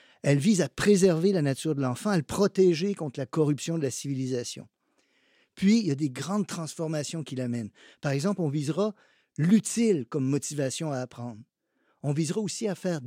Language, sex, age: French, male, 50-69